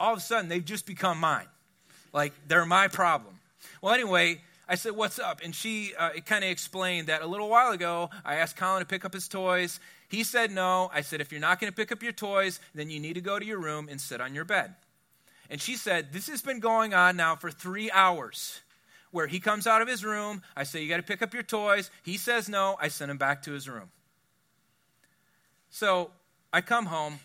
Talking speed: 235 wpm